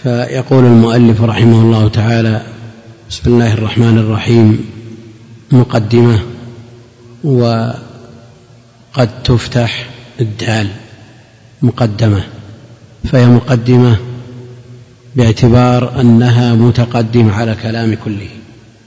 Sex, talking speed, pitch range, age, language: male, 70 wpm, 115-120 Hz, 50-69, Arabic